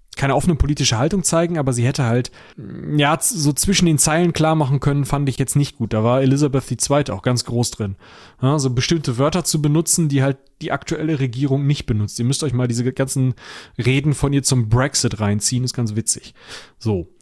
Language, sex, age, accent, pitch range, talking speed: German, male, 30-49, German, 115-140 Hz, 205 wpm